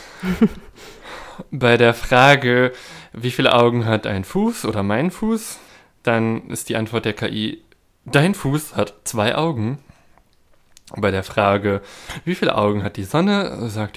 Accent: German